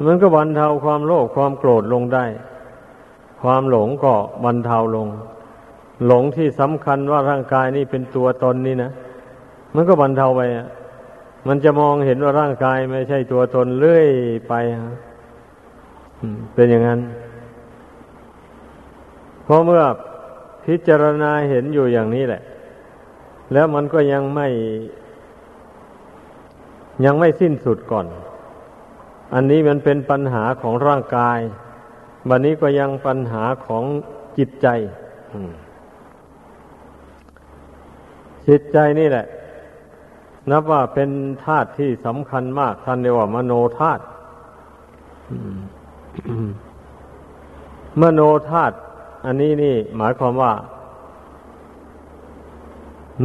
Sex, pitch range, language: male, 120-145 Hz, Thai